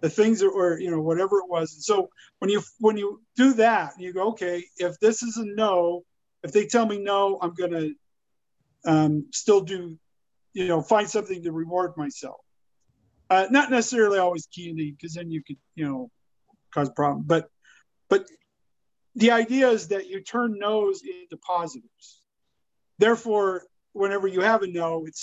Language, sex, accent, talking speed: English, male, American, 175 wpm